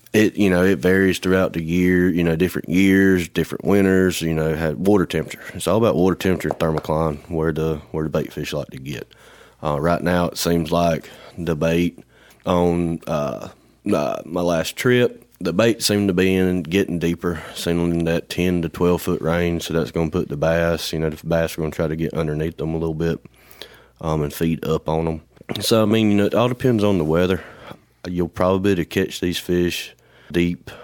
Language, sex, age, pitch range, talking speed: English, male, 30-49, 80-90 Hz, 220 wpm